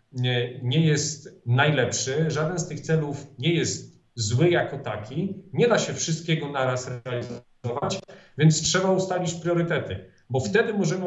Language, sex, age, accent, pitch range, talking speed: Polish, male, 40-59, native, 125-170 Hz, 135 wpm